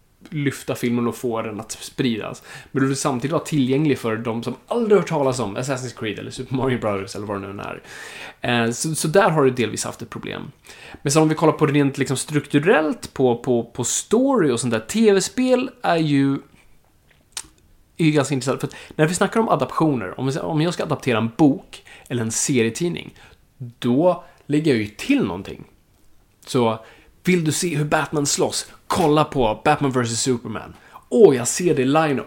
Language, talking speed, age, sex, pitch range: Swedish, 190 wpm, 20-39, male, 125-160 Hz